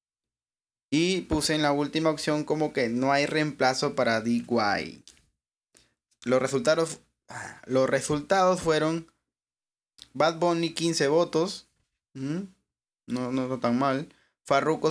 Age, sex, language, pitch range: 20-39, male, Spanish, 120-150 Hz